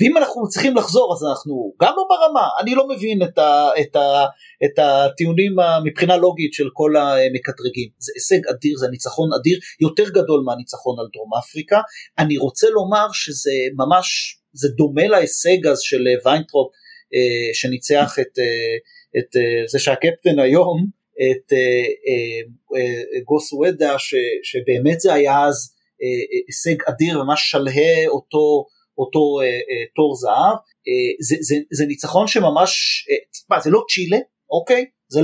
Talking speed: 140 wpm